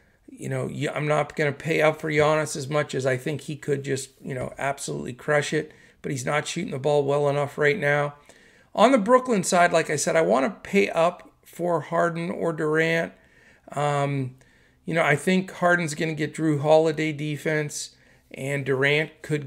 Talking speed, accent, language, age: 195 wpm, American, English, 40-59